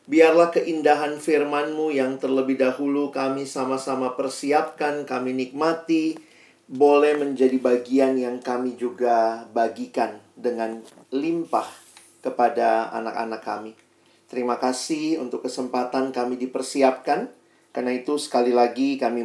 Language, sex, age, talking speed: Indonesian, male, 40-59, 105 wpm